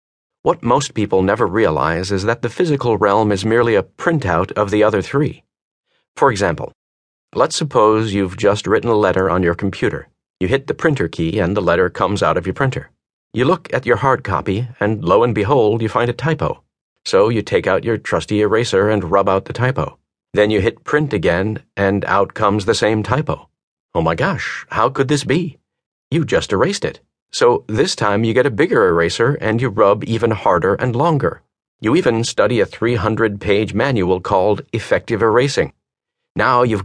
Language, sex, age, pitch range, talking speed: English, male, 40-59, 100-130 Hz, 190 wpm